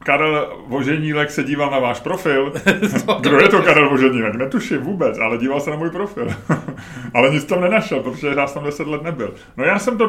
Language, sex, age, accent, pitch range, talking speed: Czech, male, 30-49, native, 105-145 Hz, 210 wpm